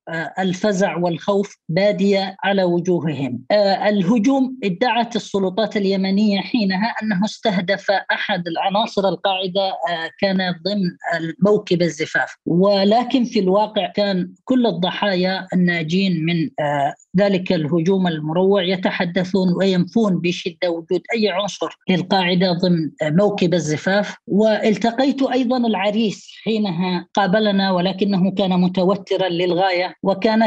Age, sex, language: 20-39, female, Arabic